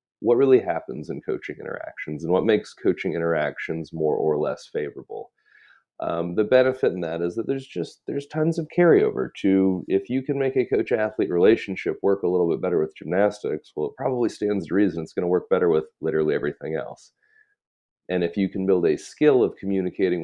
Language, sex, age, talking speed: English, male, 30-49, 200 wpm